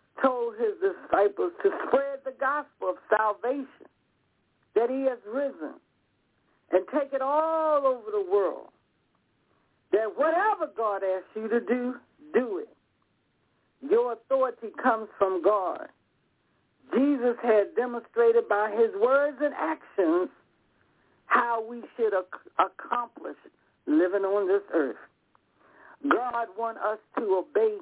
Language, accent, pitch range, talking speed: English, American, 200-315 Hz, 120 wpm